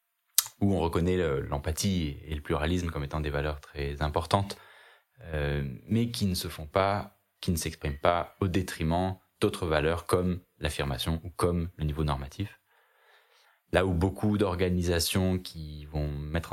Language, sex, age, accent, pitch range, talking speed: French, male, 20-39, French, 80-100 Hz, 155 wpm